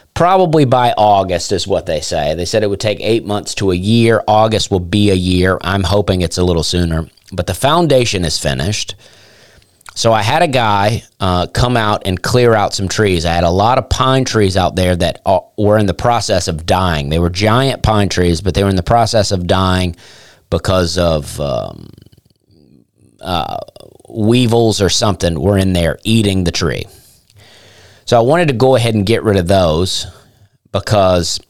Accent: American